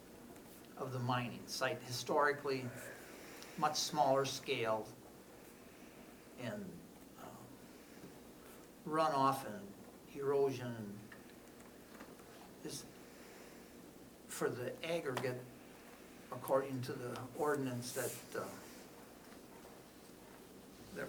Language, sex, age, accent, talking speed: English, male, 60-79, American, 70 wpm